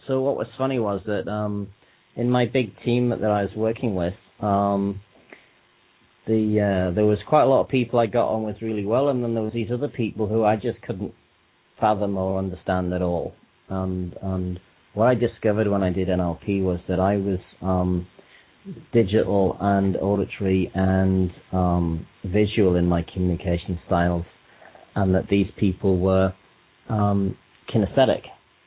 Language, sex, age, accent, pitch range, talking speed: English, male, 30-49, British, 95-110 Hz, 165 wpm